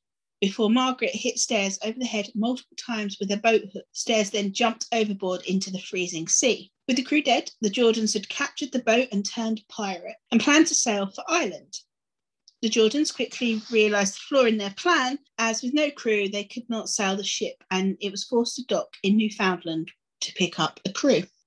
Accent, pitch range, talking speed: British, 200-245 Hz, 200 wpm